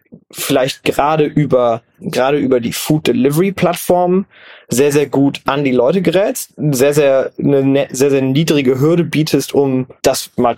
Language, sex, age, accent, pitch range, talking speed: German, male, 20-39, German, 130-155 Hz, 155 wpm